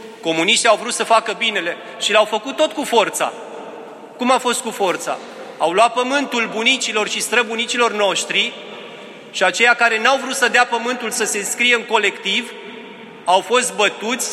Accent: native